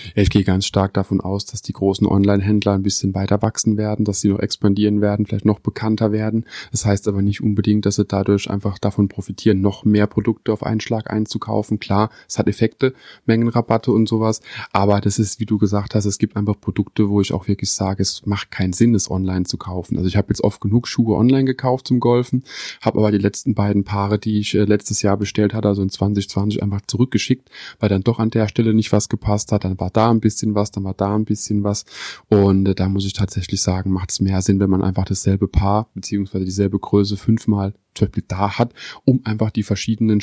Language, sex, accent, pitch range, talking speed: German, male, German, 100-110 Hz, 225 wpm